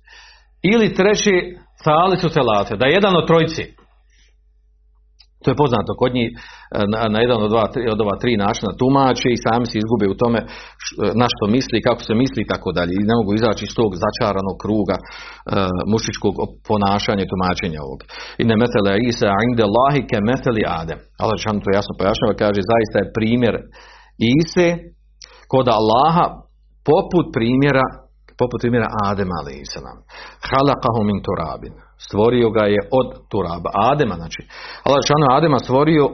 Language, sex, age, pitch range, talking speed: Croatian, male, 40-59, 105-135 Hz, 155 wpm